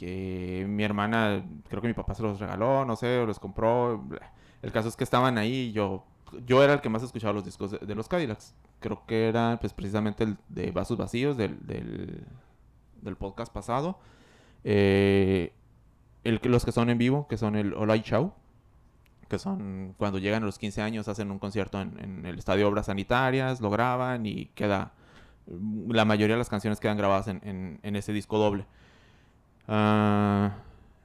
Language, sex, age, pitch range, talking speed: Spanish, male, 20-39, 100-120 Hz, 185 wpm